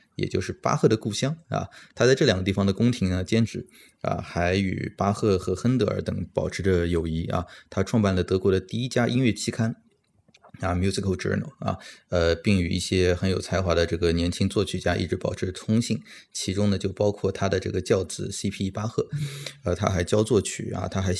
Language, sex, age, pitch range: Chinese, male, 20-39, 90-110 Hz